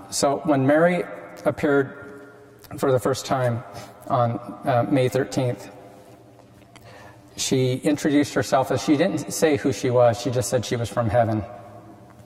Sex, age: male, 40-59